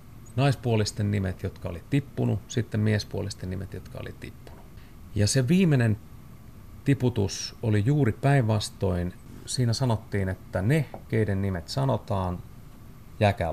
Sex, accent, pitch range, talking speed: male, native, 95-115 Hz, 115 wpm